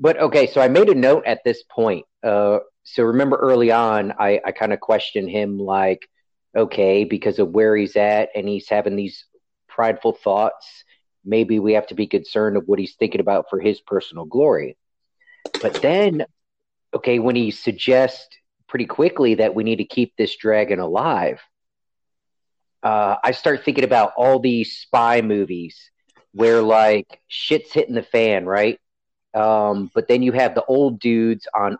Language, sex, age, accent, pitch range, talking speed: English, male, 40-59, American, 105-125 Hz, 170 wpm